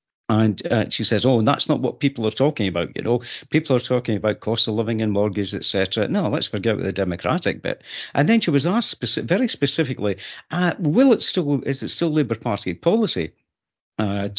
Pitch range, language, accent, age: 105-170 Hz, English, British, 50-69